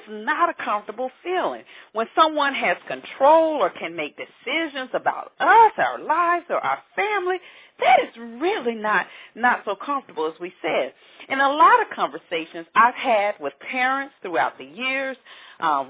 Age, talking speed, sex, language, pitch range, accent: 40-59, 160 wpm, female, English, 200-325 Hz, American